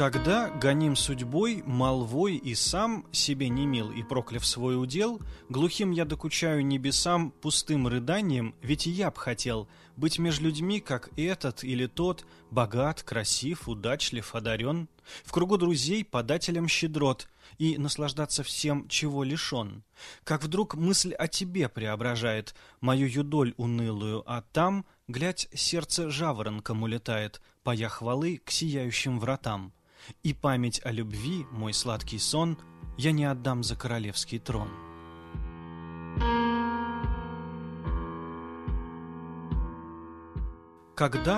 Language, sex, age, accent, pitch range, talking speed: Russian, male, 20-39, native, 115-155 Hz, 115 wpm